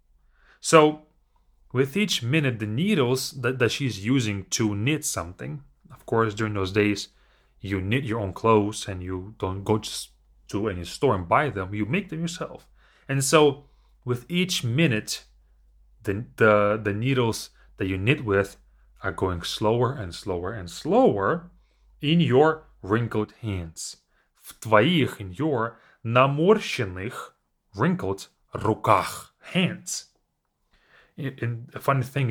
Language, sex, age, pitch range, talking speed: English, male, 30-49, 100-145 Hz, 135 wpm